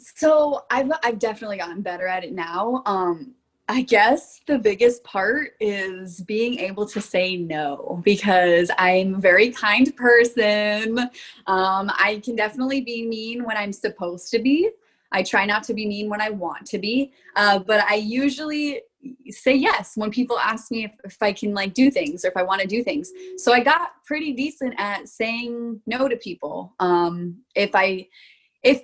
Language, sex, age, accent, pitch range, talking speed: English, female, 20-39, American, 195-245 Hz, 180 wpm